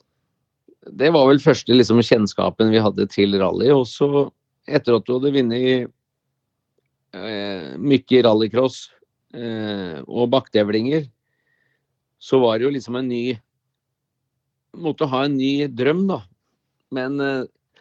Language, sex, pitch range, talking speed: Swedish, male, 110-130 Hz, 125 wpm